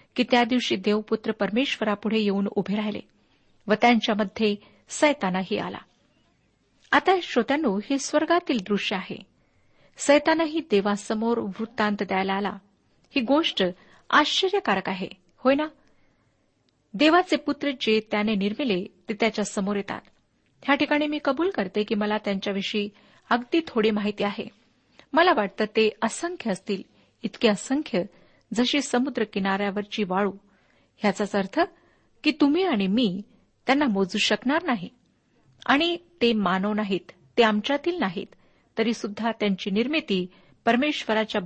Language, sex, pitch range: Marathi, female, 205-275 Hz